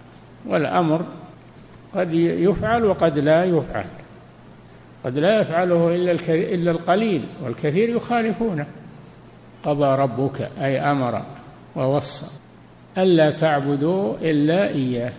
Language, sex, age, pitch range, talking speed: Arabic, male, 60-79, 135-165 Hz, 90 wpm